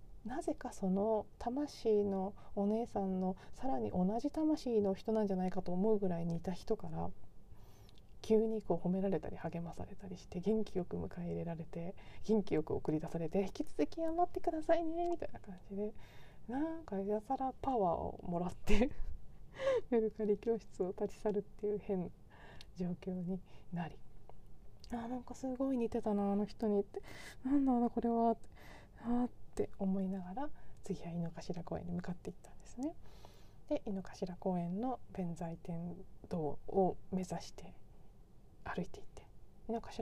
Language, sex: Japanese, female